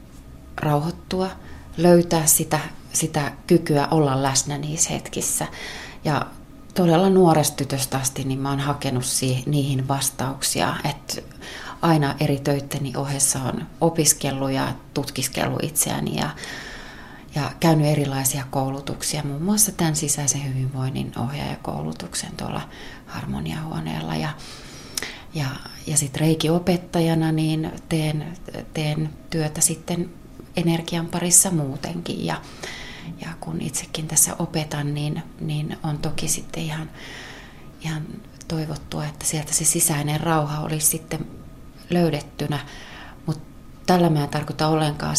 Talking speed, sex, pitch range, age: 110 wpm, female, 135-160 Hz, 30-49